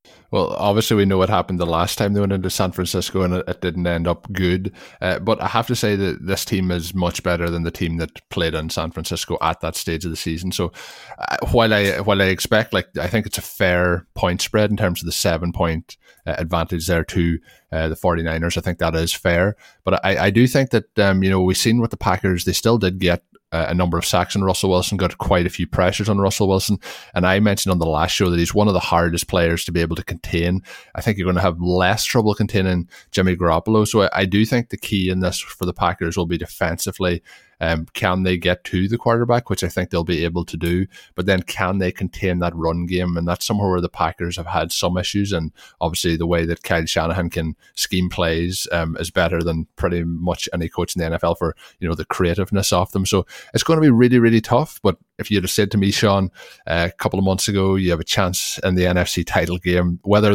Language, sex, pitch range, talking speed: English, male, 85-100 Hz, 250 wpm